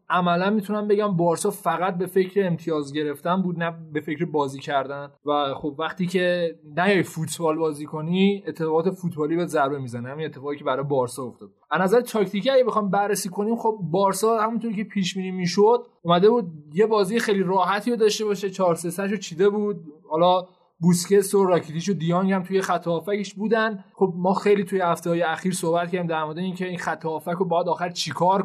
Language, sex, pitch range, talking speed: Persian, male, 160-195 Hz, 185 wpm